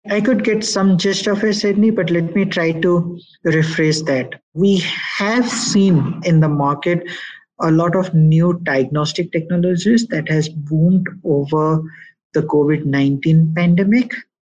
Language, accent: English, Indian